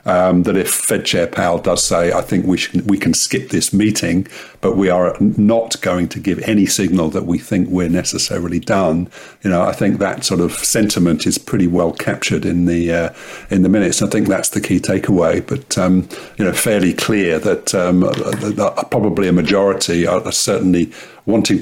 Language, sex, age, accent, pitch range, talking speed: English, male, 50-69, British, 85-100 Hz, 195 wpm